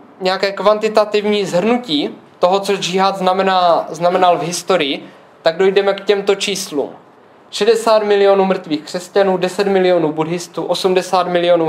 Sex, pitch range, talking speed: male, 170-195 Hz, 120 wpm